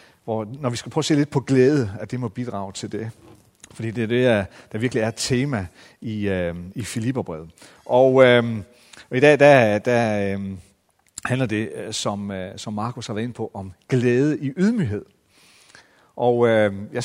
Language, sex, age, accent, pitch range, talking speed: Danish, male, 40-59, native, 110-155 Hz, 165 wpm